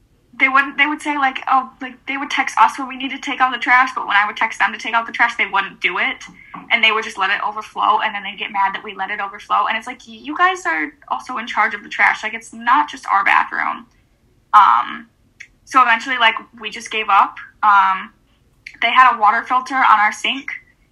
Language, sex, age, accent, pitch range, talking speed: English, female, 10-29, American, 210-255 Hz, 250 wpm